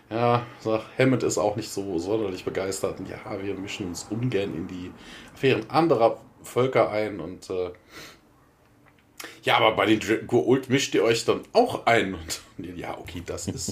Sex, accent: male, German